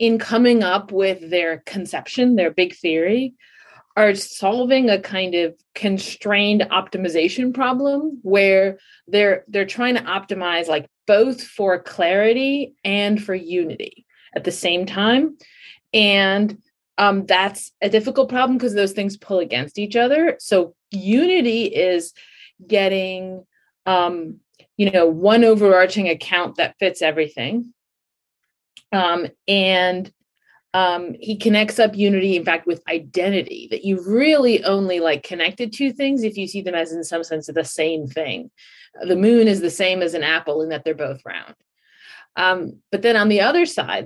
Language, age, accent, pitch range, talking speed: English, 30-49, American, 180-230 Hz, 150 wpm